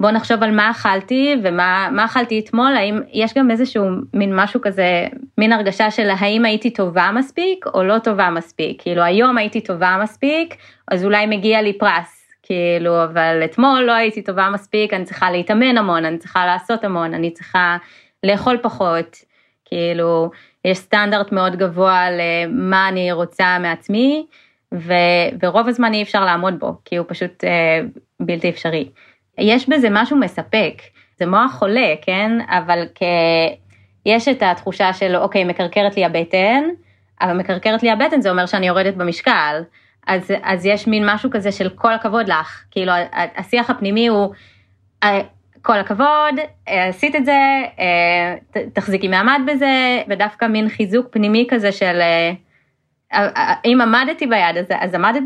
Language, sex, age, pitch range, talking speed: Hebrew, female, 20-39, 175-230 Hz, 150 wpm